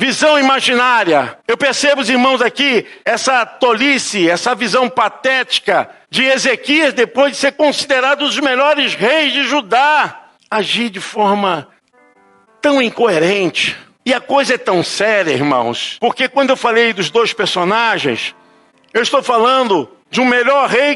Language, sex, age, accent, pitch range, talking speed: Portuguese, male, 60-79, Brazilian, 230-300 Hz, 145 wpm